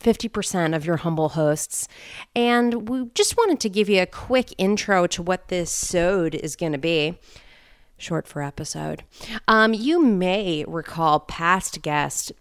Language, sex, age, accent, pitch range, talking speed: English, female, 30-49, American, 155-215 Hz, 155 wpm